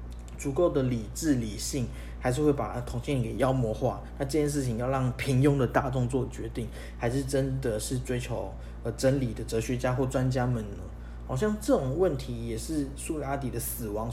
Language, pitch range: Chinese, 110-140 Hz